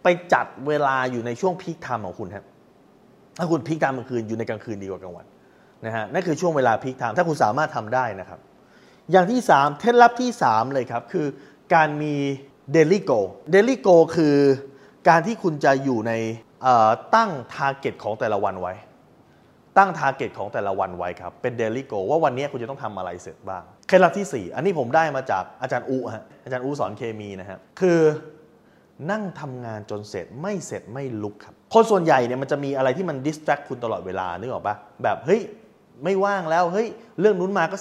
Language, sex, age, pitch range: Thai, male, 20-39, 120-180 Hz